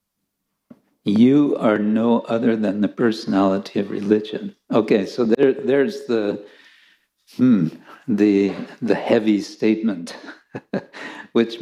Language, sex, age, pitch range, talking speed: English, male, 60-79, 110-155 Hz, 105 wpm